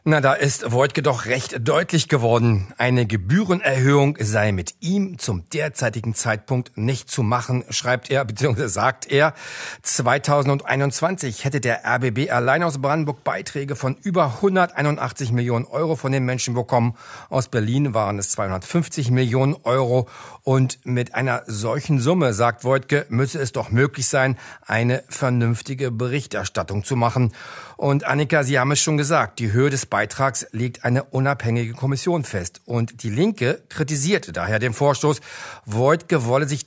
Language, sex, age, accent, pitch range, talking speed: German, male, 40-59, German, 115-140 Hz, 150 wpm